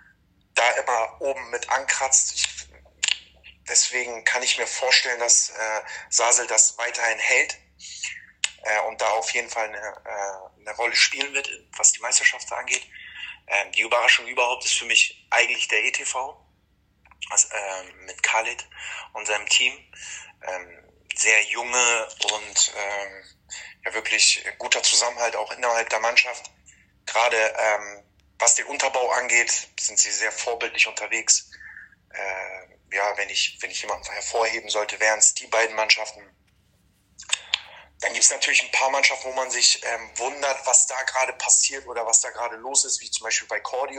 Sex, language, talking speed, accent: male, German, 155 wpm, German